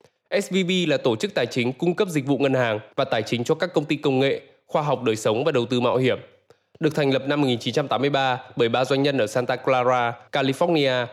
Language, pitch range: Vietnamese, 125-175 Hz